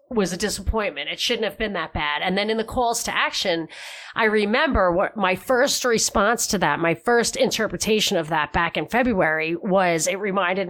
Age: 30-49